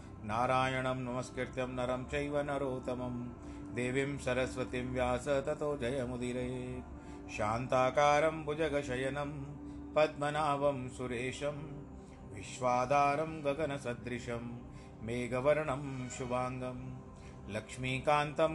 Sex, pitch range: male, 125-145 Hz